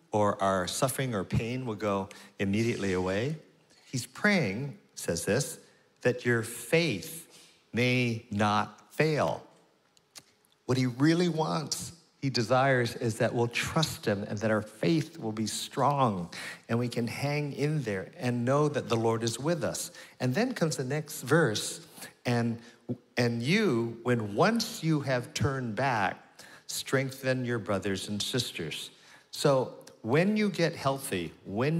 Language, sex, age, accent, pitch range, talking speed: English, male, 50-69, American, 100-135 Hz, 145 wpm